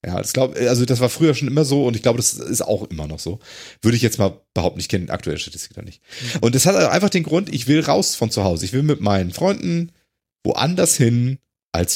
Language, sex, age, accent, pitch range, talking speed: German, male, 40-59, German, 110-155 Hz, 255 wpm